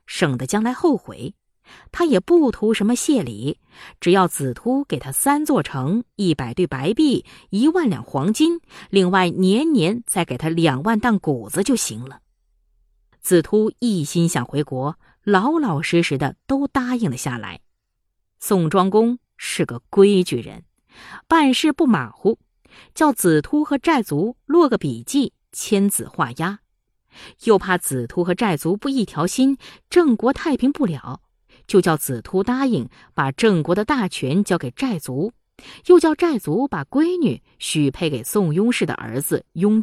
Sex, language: female, Chinese